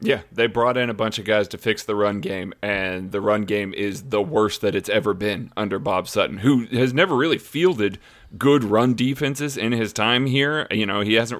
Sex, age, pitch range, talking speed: male, 30-49, 105-130 Hz, 225 wpm